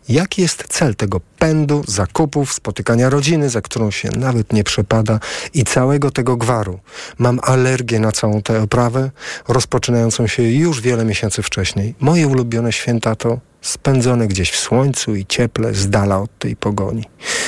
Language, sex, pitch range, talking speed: Polish, male, 110-155 Hz, 155 wpm